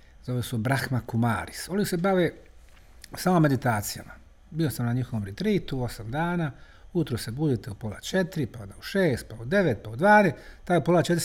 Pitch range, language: 105-175 Hz, Croatian